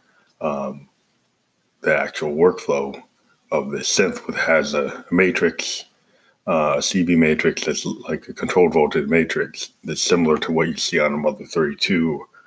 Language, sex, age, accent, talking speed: English, male, 30-49, American, 145 wpm